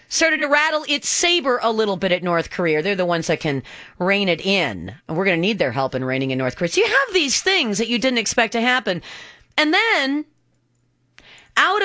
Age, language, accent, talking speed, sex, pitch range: 40-59, English, American, 230 wpm, female, 170-270 Hz